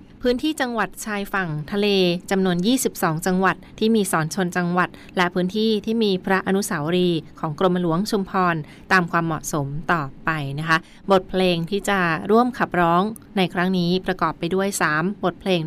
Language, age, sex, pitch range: Thai, 20-39, female, 165-195 Hz